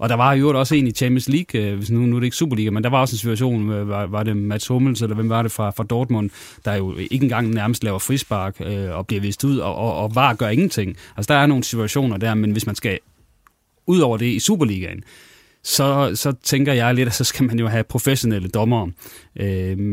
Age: 30-49